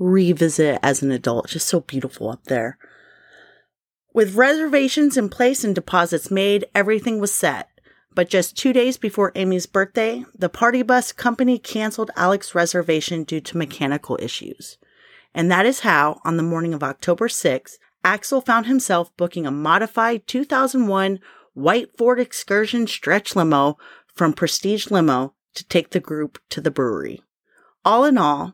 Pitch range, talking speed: 165-240 Hz, 155 wpm